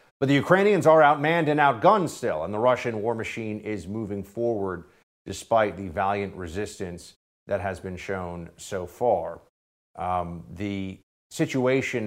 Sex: male